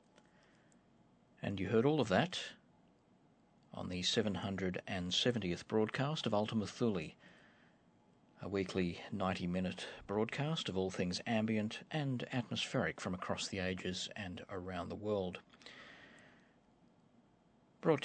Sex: male